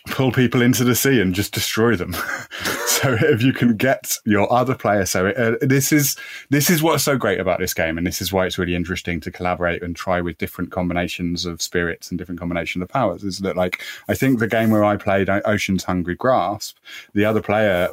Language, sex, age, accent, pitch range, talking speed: English, male, 30-49, British, 95-115 Hz, 225 wpm